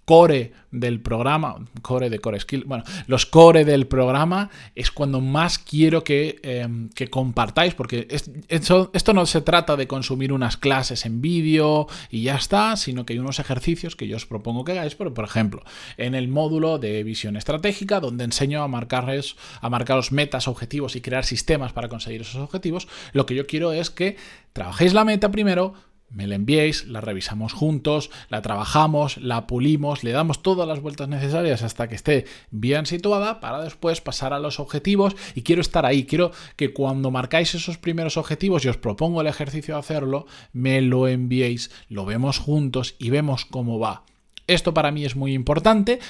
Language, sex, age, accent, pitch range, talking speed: Spanish, male, 20-39, Spanish, 125-160 Hz, 185 wpm